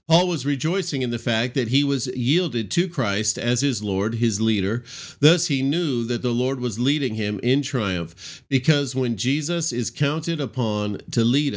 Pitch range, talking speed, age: 100-135 Hz, 185 wpm, 40-59